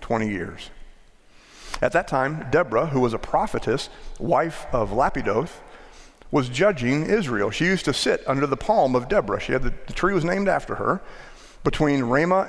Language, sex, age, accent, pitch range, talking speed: English, male, 40-59, American, 120-155 Hz, 170 wpm